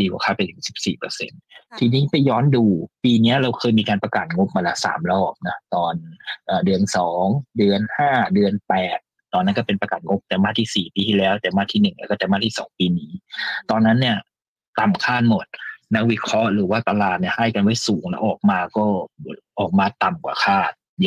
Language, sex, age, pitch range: Thai, male, 20-39, 100-145 Hz